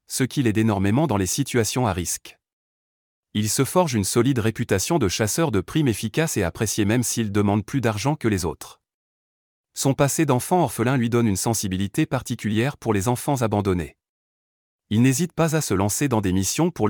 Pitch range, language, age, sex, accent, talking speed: 100-130 Hz, French, 30-49, male, French, 190 wpm